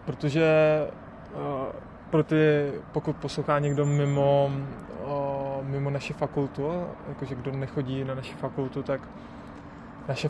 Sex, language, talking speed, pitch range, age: male, Czech, 115 wpm, 140-155 Hz, 20-39